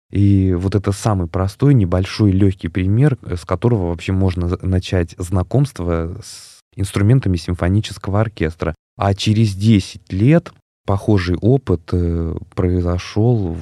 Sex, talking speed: male, 110 wpm